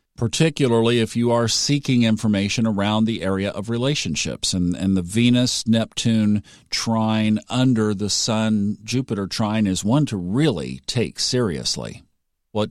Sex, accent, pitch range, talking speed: male, American, 100-125 Hz, 125 wpm